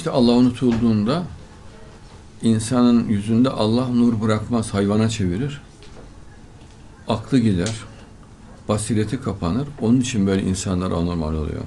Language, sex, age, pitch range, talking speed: Turkish, male, 60-79, 95-125 Hz, 105 wpm